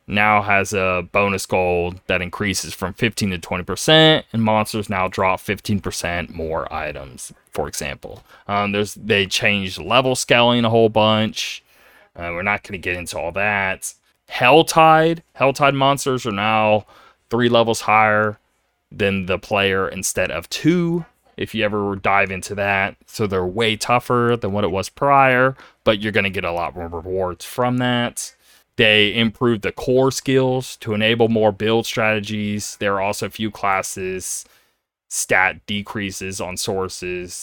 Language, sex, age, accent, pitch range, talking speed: English, male, 20-39, American, 95-115 Hz, 155 wpm